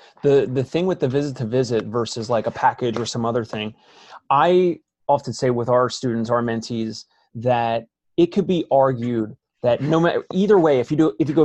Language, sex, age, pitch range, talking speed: English, male, 30-49, 125-155 Hz, 210 wpm